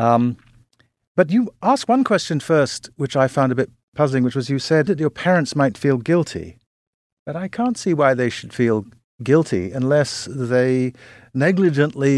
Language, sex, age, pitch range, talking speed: English, male, 50-69, 110-155 Hz, 170 wpm